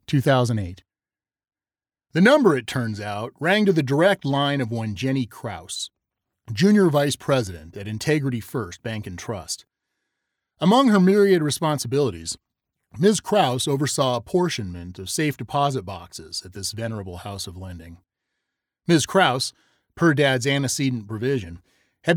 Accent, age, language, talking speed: American, 30-49, English, 135 wpm